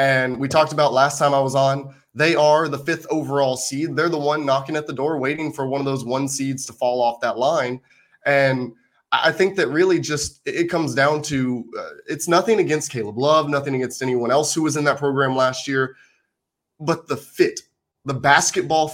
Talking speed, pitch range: 210 wpm, 130-150 Hz